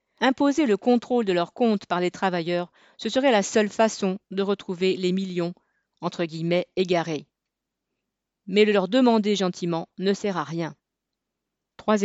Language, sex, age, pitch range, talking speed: French, female, 40-59, 180-225 Hz, 155 wpm